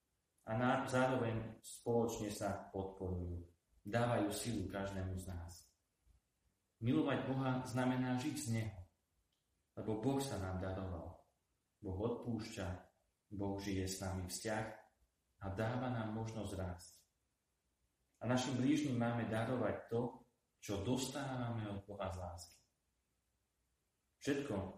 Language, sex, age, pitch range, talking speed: Slovak, male, 30-49, 95-120 Hz, 110 wpm